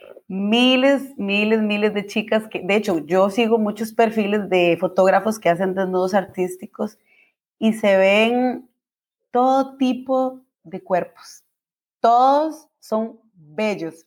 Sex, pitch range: female, 185-230 Hz